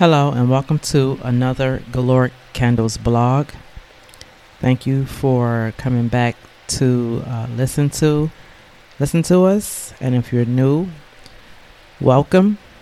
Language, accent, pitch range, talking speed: English, American, 115-140 Hz, 115 wpm